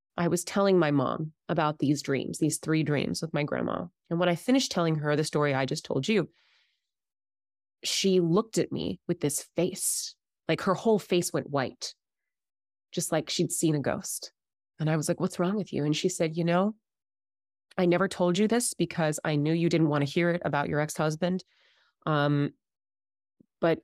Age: 30-49